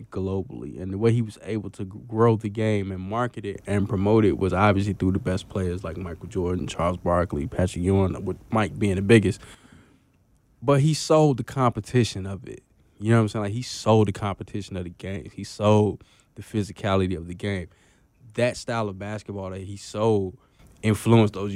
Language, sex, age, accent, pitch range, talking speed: English, male, 20-39, American, 95-110 Hz, 200 wpm